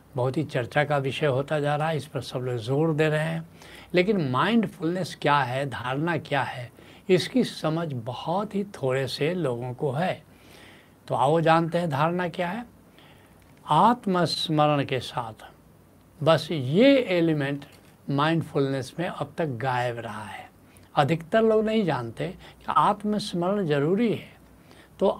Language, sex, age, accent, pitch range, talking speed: Hindi, male, 70-89, native, 130-185 Hz, 145 wpm